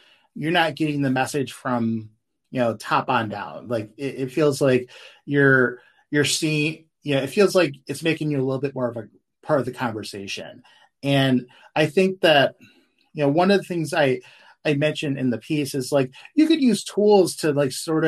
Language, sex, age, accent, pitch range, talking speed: English, male, 30-49, American, 120-145 Hz, 205 wpm